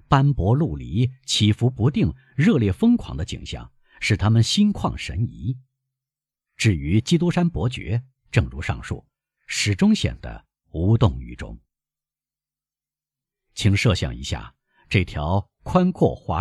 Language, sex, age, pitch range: Chinese, male, 50-69, 105-145 Hz